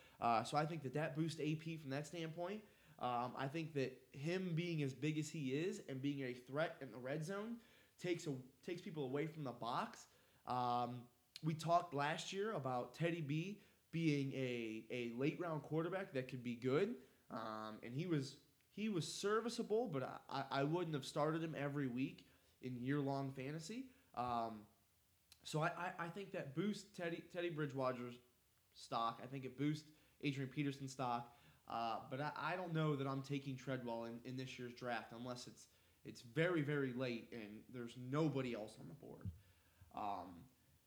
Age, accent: 20-39, American